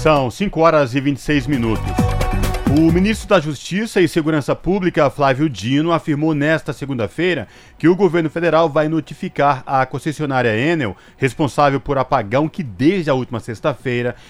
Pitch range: 125-160 Hz